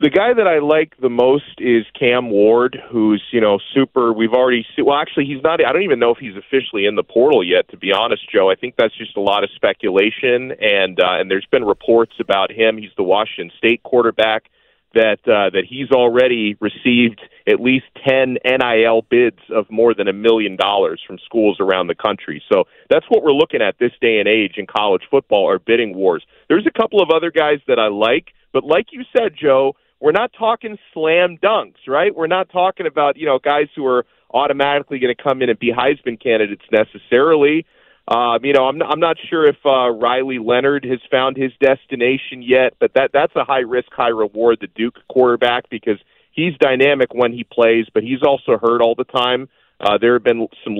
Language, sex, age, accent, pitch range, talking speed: English, male, 40-59, American, 120-160 Hz, 215 wpm